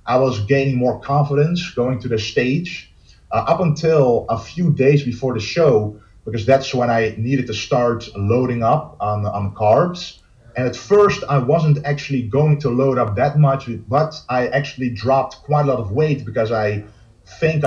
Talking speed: 185 wpm